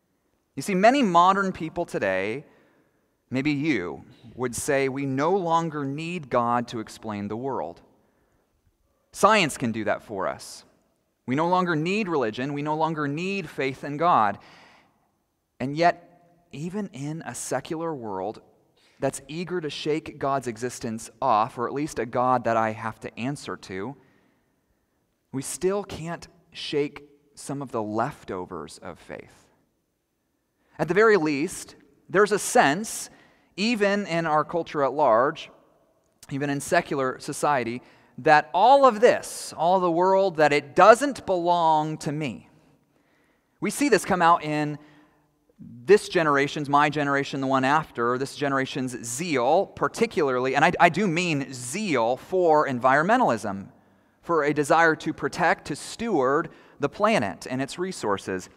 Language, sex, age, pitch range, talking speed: English, male, 30-49, 125-175 Hz, 140 wpm